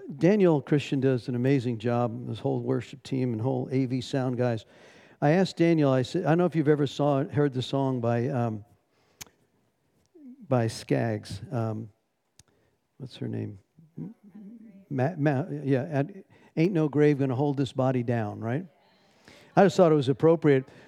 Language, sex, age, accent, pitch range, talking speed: English, male, 50-69, American, 135-180 Hz, 160 wpm